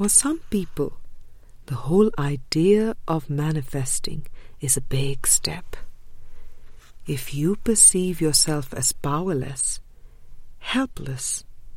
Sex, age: female, 50-69